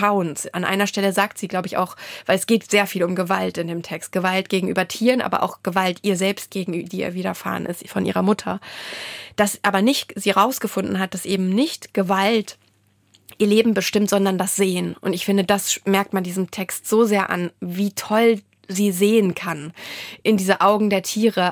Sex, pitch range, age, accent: female, 185-210 Hz, 20-39, German